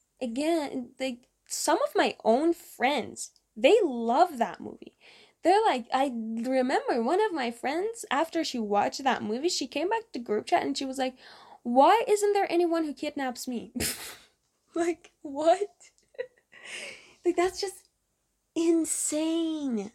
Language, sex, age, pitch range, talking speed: English, female, 10-29, 230-320 Hz, 140 wpm